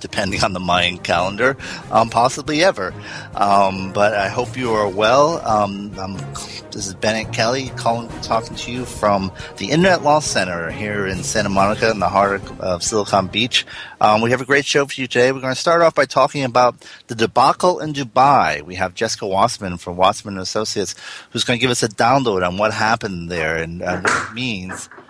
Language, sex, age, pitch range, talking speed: English, male, 30-49, 95-125 Hz, 205 wpm